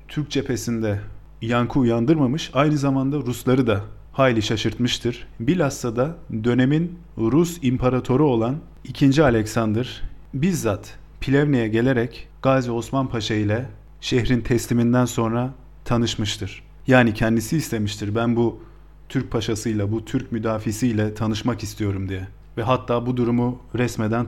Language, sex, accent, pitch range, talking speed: Turkish, male, native, 110-135 Hz, 115 wpm